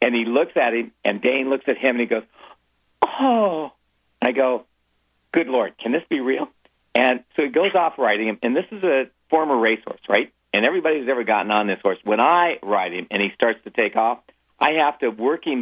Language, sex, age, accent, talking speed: English, male, 50-69, American, 225 wpm